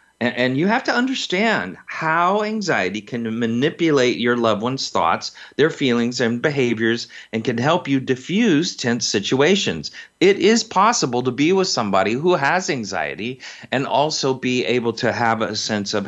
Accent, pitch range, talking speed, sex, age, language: American, 115-150 Hz, 160 wpm, male, 40-59, English